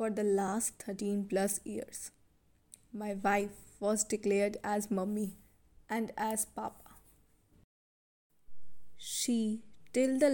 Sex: female